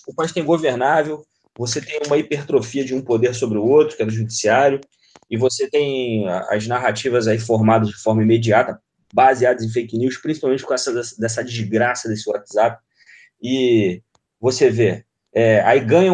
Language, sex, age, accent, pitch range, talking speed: English, male, 20-39, Brazilian, 115-150 Hz, 165 wpm